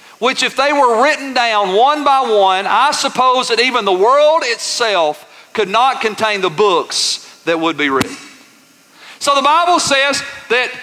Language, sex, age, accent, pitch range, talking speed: English, male, 40-59, American, 180-275 Hz, 165 wpm